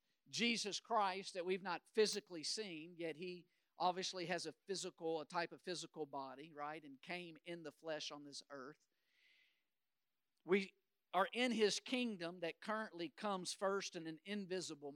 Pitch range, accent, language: 160-200 Hz, American, English